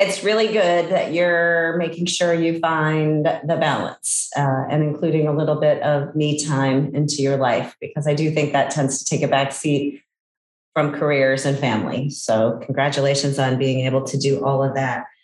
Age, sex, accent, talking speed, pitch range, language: 30-49, female, American, 185 wpm, 145-175 Hz, English